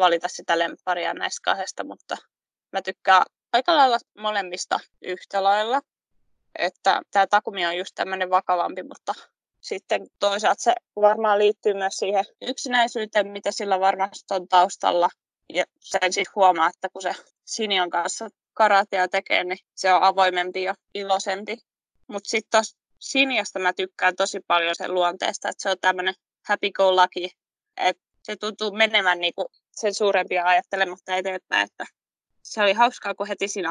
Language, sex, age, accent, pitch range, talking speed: Finnish, female, 20-39, native, 185-210 Hz, 150 wpm